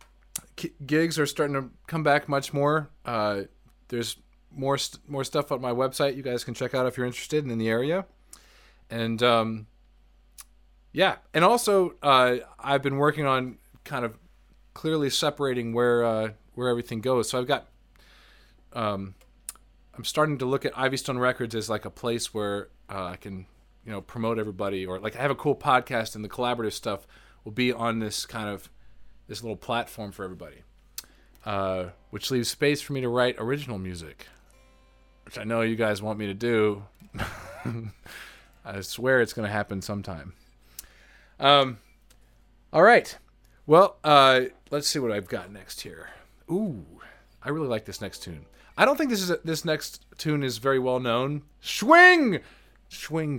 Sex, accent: male, American